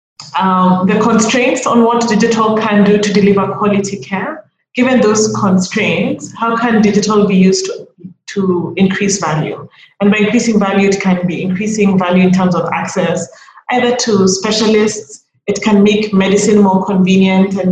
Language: English